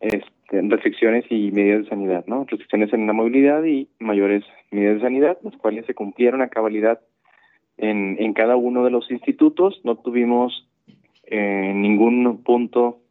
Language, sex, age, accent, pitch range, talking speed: Spanish, male, 20-39, Mexican, 105-125 Hz, 155 wpm